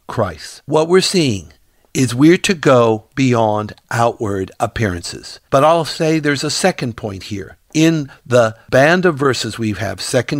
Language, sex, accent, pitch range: English, male, American, 115-150 Hz